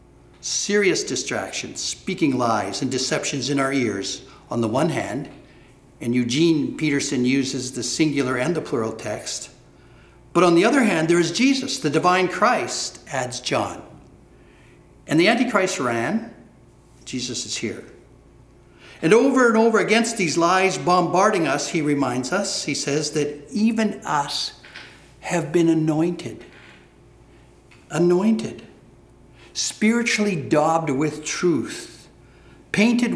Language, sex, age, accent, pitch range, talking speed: English, male, 60-79, American, 130-170 Hz, 125 wpm